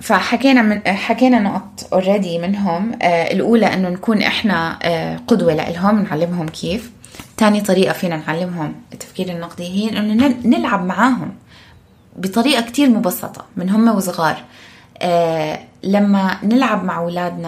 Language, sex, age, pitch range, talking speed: Arabic, female, 20-39, 175-230 Hz, 125 wpm